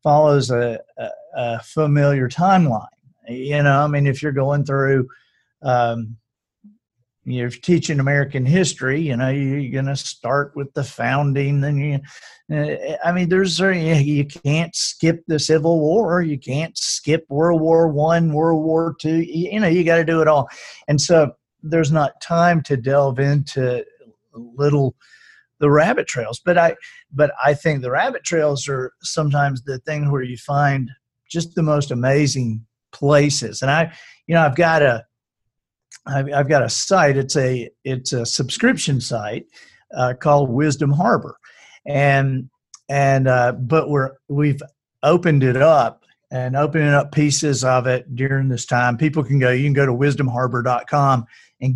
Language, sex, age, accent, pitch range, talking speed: English, male, 50-69, American, 130-160 Hz, 160 wpm